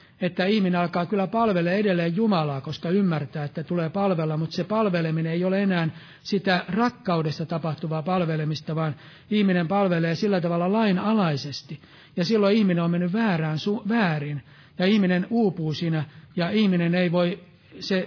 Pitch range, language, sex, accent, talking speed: 155-190 Hz, Finnish, male, native, 145 wpm